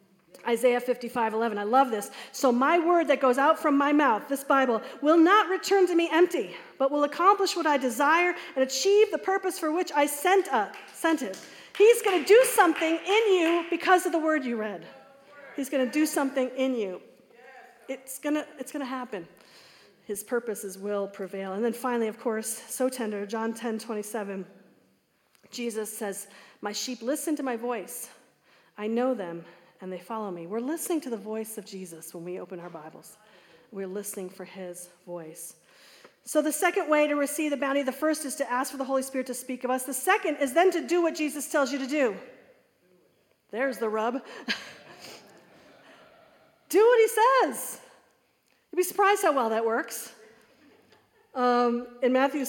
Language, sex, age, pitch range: English, female, 40-59, 225-305 Hz